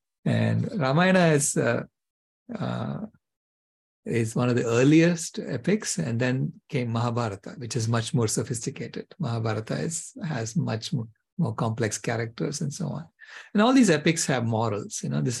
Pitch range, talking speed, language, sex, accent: 115-160 Hz, 150 wpm, English, male, Indian